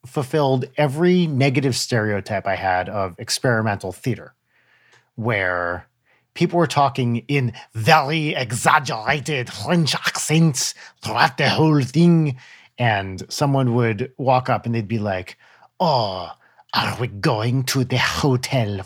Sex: male